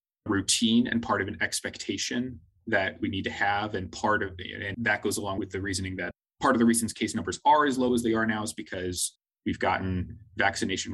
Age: 20-39